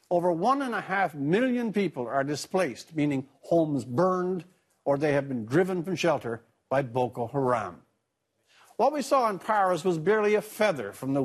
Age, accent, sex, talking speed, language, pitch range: 60-79, American, male, 175 wpm, English, 140-180 Hz